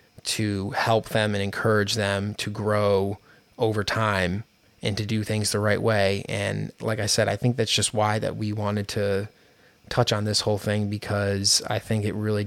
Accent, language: American, English